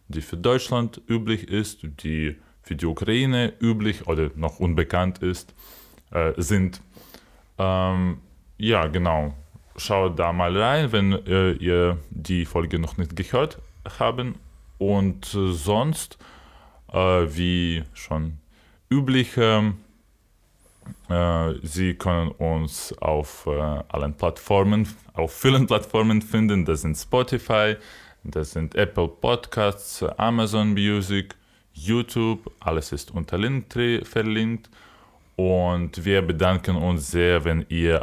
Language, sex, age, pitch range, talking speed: German, male, 20-39, 80-105 Hz, 115 wpm